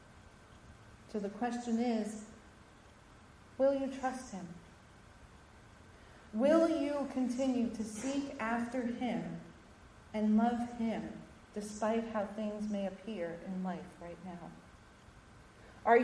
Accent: American